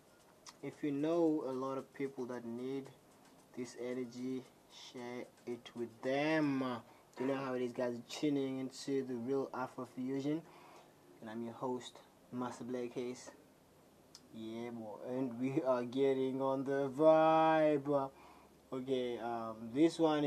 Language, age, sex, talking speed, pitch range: English, 20-39, male, 135 wpm, 120-145 Hz